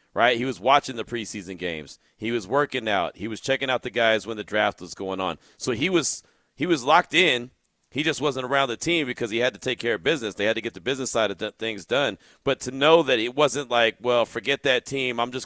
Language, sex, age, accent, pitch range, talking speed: English, male, 40-59, American, 105-125 Hz, 265 wpm